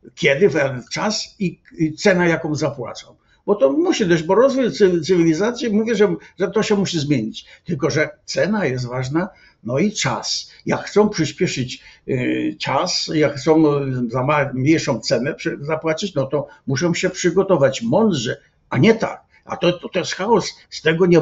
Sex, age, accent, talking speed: male, 60-79, native, 155 wpm